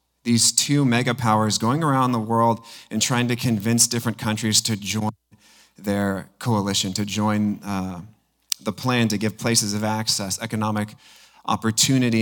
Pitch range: 110-130 Hz